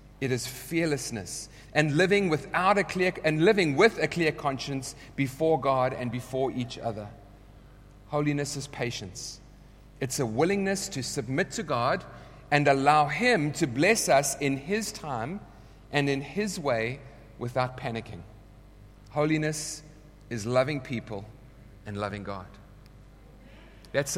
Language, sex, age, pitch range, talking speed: English, male, 30-49, 130-185 Hz, 130 wpm